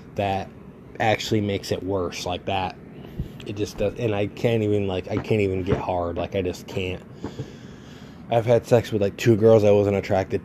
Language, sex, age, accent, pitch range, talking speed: English, male, 20-39, American, 95-105 Hz, 195 wpm